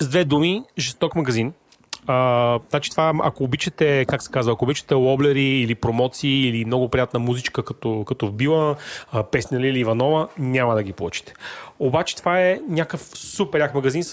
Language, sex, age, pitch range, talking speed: Bulgarian, male, 30-49, 115-145 Hz, 170 wpm